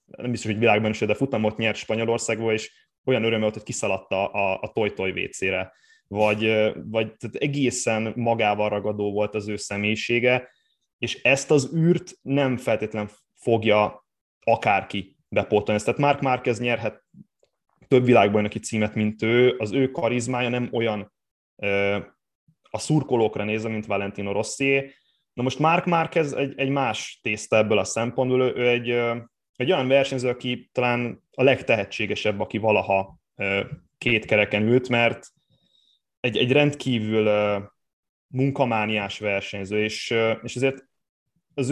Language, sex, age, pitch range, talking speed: Hungarian, male, 20-39, 105-130 Hz, 135 wpm